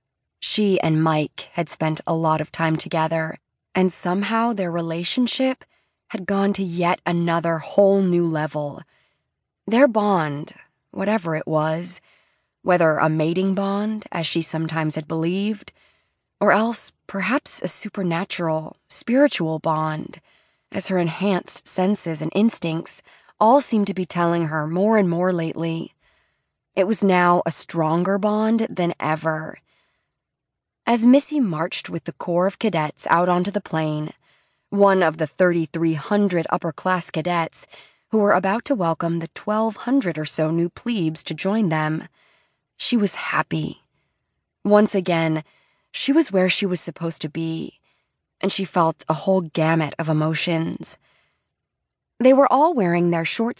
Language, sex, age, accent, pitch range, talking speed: English, female, 20-39, American, 160-200 Hz, 140 wpm